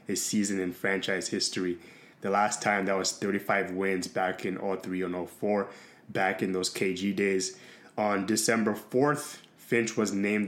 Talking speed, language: 160 wpm, English